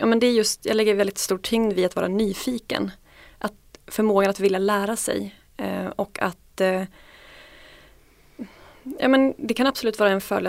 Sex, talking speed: female, 185 wpm